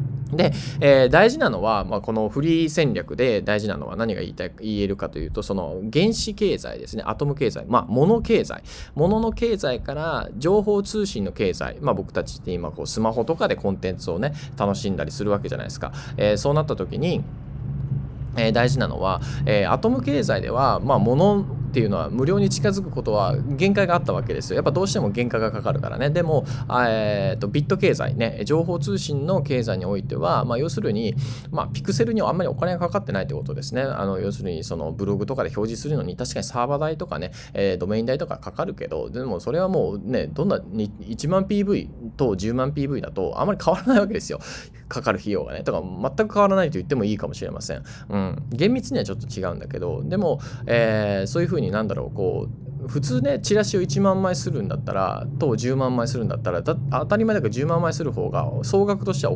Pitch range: 115-160 Hz